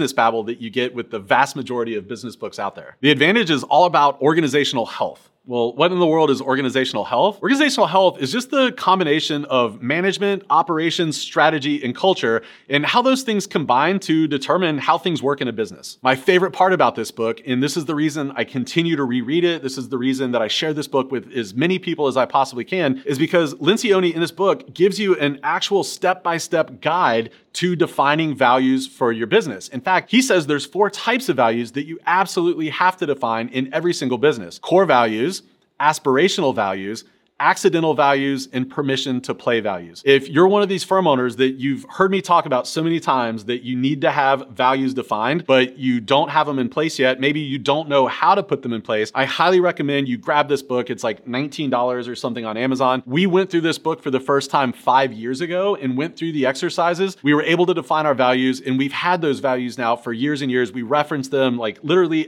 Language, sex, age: English, male, 30-49